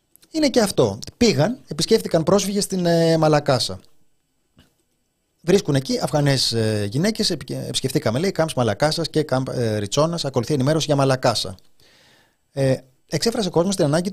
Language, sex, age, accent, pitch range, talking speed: Greek, male, 30-49, native, 125-170 Hz, 120 wpm